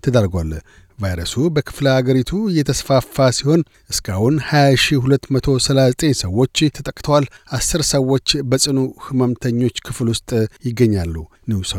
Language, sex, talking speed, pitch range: Amharic, male, 90 wpm, 120-145 Hz